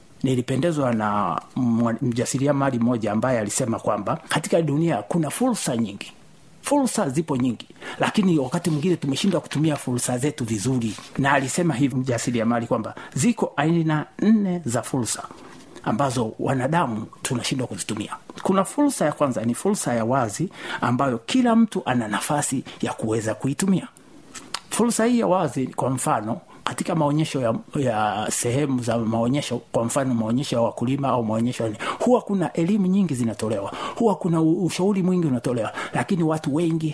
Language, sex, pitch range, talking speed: Swahili, male, 125-180 Hz, 140 wpm